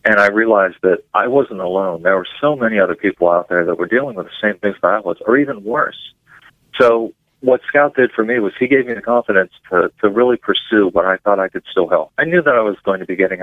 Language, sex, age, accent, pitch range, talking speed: English, male, 40-59, American, 95-115 Hz, 270 wpm